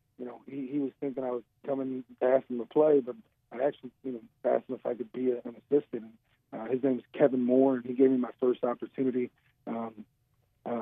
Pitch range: 120-135 Hz